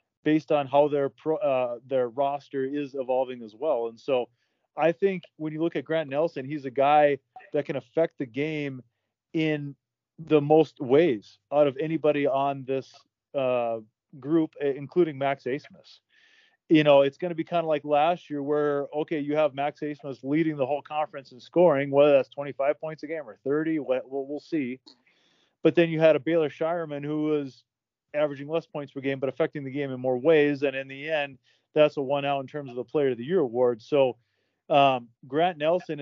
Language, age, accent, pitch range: English, 30-49, American, 135-155 Hz